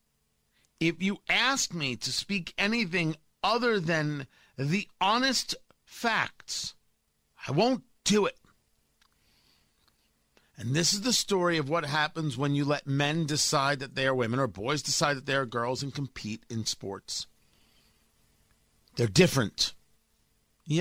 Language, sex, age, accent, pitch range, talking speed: English, male, 50-69, American, 115-185 Hz, 135 wpm